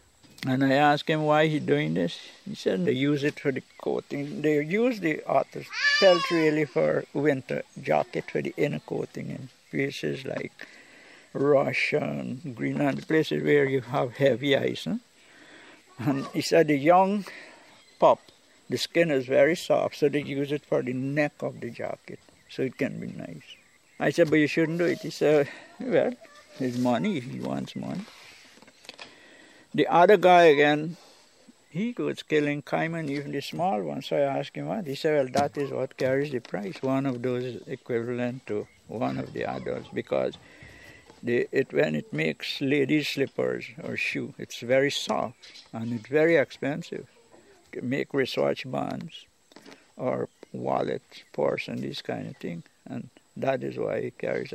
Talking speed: 170 wpm